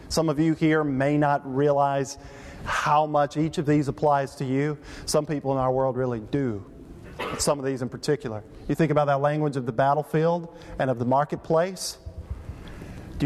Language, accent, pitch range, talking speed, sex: English, American, 140-175 Hz, 180 wpm, male